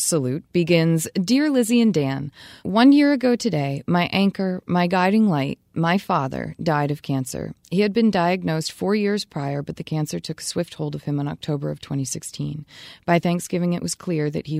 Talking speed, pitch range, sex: 190 wpm, 145-180 Hz, female